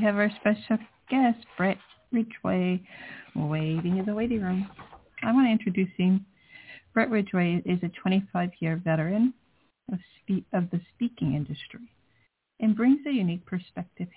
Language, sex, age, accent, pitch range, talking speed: English, female, 50-69, American, 175-220 Hz, 145 wpm